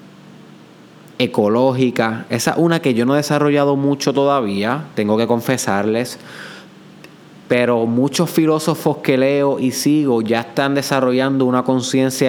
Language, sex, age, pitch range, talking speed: Spanish, male, 20-39, 120-140 Hz, 125 wpm